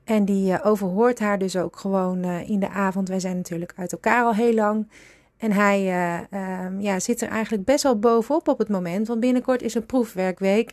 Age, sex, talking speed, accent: 30-49, female, 205 wpm, Dutch